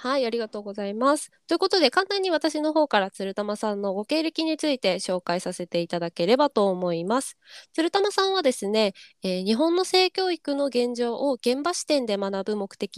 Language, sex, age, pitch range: Japanese, female, 20-39, 185-275 Hz